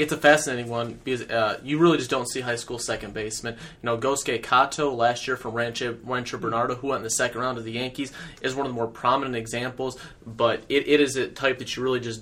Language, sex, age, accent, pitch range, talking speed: English, male, 30-49, American, 120-140 Hz, 250 wpm